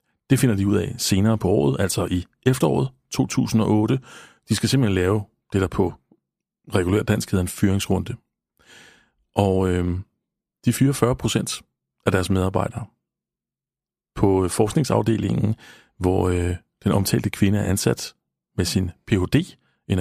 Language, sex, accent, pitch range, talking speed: Danish, male, native, 95-115 Hz, 140 wpm